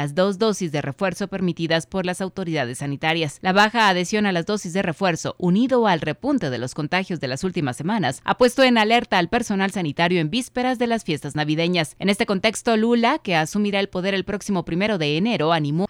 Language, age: Spanish, 30-49